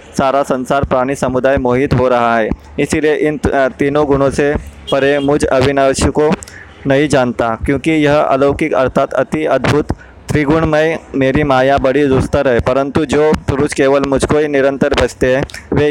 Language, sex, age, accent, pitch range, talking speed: Marathi, male, 20-39, native, 130-145 Hz, 160 wpm